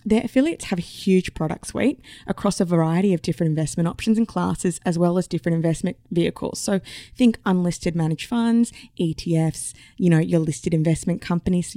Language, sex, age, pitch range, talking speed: English, female, 20-39, 170-225 Hz, 180 wpm